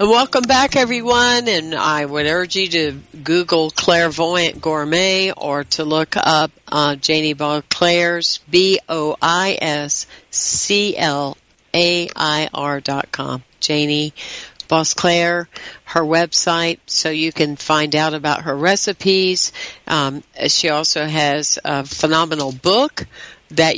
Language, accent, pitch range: English, American, 150-185 Hz